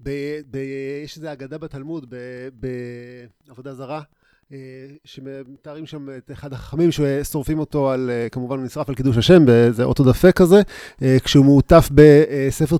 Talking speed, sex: 140 wpm, male